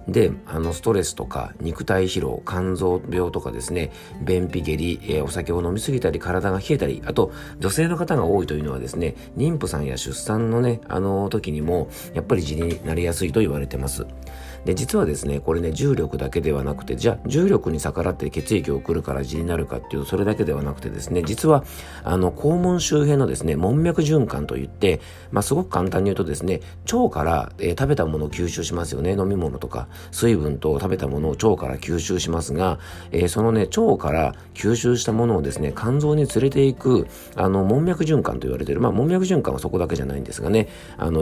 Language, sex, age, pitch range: Japanese, male, 40-59, 75-120 Hz